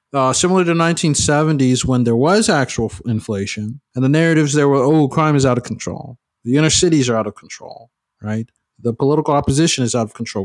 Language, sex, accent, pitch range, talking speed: English, male, American, 115-150 Hz, 200 wpm